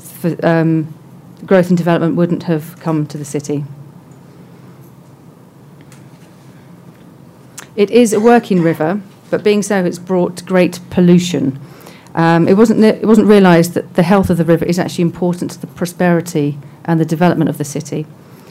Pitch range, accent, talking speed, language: 155-180 Hz, British, 150 wpm, Portuguese